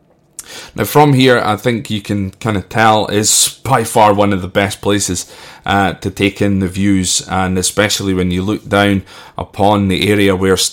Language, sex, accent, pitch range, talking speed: English, male, British, 95-115 Hz, 190 wpm